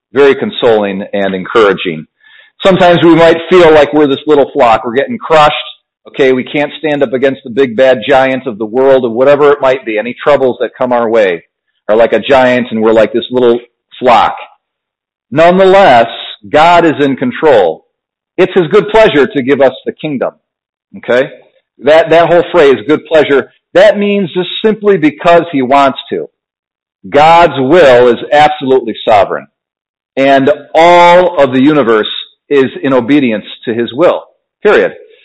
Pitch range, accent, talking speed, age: 130-175 Hz, American, 165 wpm, 40-59